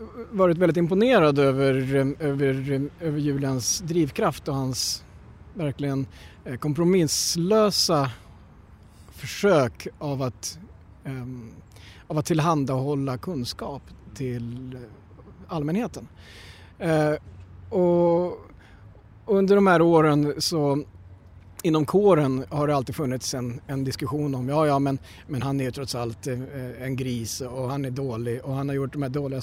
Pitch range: 125-155 Hz